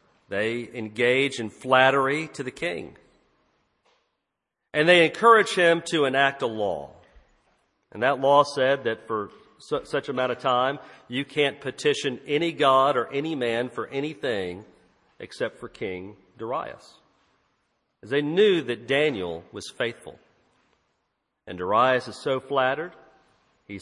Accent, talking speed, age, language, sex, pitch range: American, 135 wpm, 50-69, English, male, 120-150 Hz